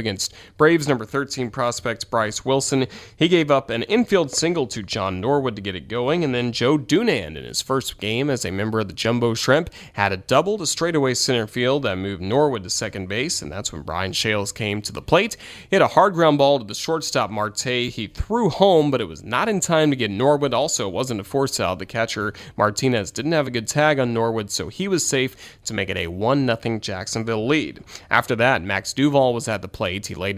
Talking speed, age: 230 wpm, 30-49